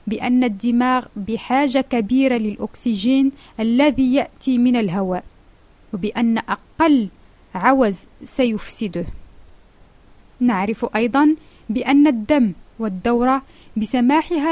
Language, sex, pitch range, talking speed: Arabic, female, 215-290 Hz, 80 wpm